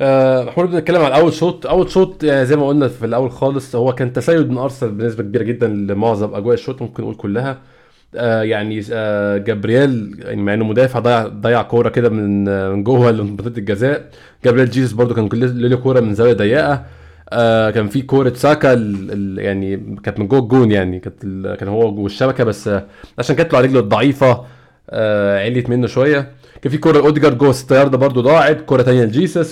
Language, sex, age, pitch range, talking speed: Arabic, male, 20-39, 115-150 Hz, 190 wpm